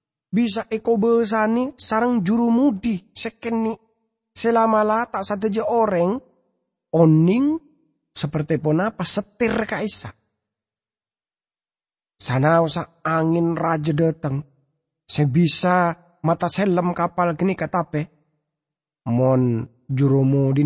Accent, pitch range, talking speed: Indonesian, 145-215 Hz, 120 wpm